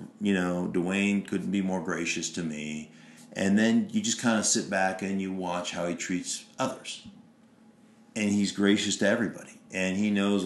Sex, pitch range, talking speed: male, 90-105 Hz, 185 wpm